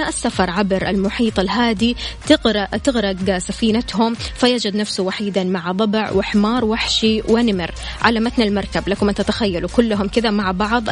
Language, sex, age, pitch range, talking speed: Arabic, female, 20-39, 195-235 Hz, 130 wpm